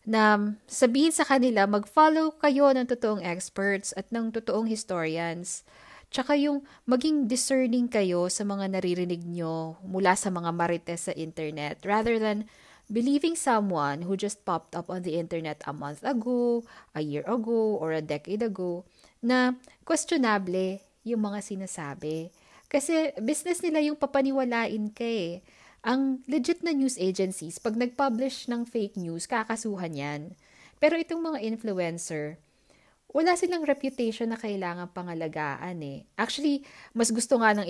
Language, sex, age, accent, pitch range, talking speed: Filipino, female, 20-39, native, 175-255 Hz, 140 wpm